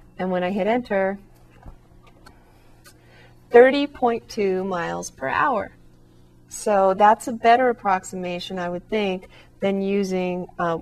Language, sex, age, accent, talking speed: English, female, 40-59, American, 110 wpm